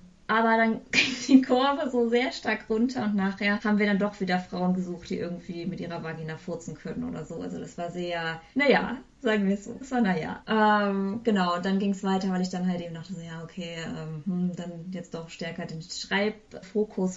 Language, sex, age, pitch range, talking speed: English, female, 20-39, 170-205 Hz, 215 wpm